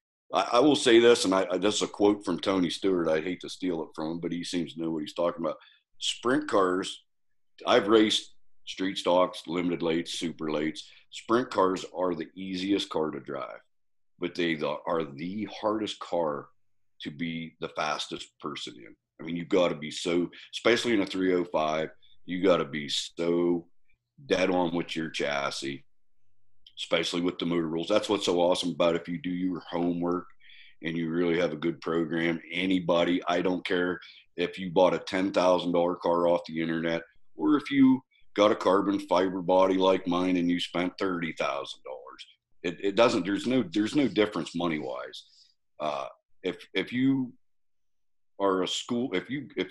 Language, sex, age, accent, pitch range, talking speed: English, male, 40-59, American, 85-100 Hz, 175 wpm